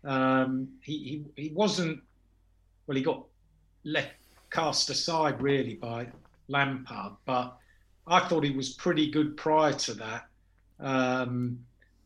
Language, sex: English, male